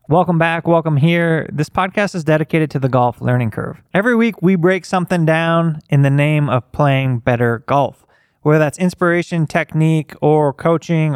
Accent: American